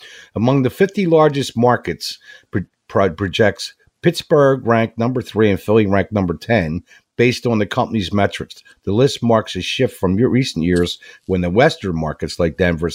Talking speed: 160 wpm